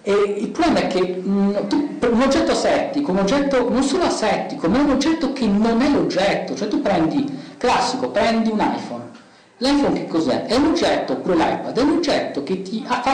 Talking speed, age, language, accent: 200 wpm, 50-69, Italian, native